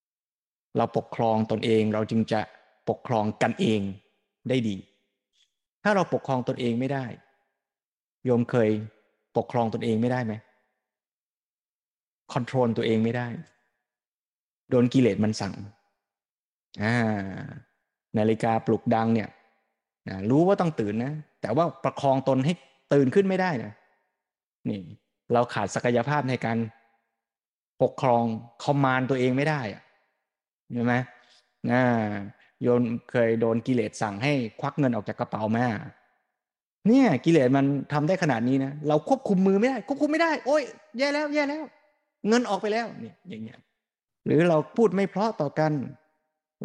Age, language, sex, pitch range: 20-39, Thai, male, 115-155 Hz